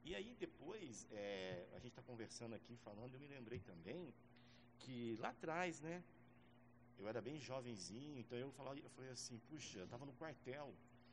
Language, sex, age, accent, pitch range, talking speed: Portuguese, male, 50-69, Brazilian, 115-140 Hz, 180 wpm